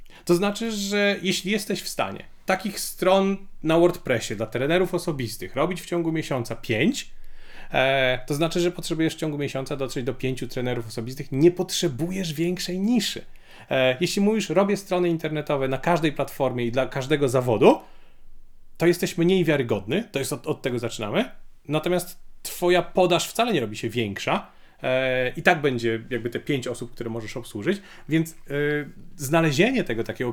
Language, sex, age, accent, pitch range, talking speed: Polish, male, 30-49, native, 130-175 Hz, 160 wpm